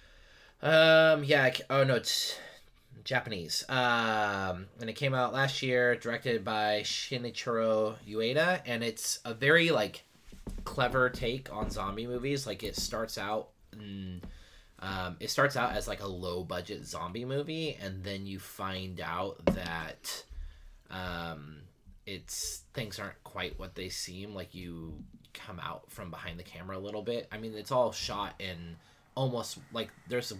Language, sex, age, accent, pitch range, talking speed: English, male, 20-39, American, 90-120 Hz, 150 wpm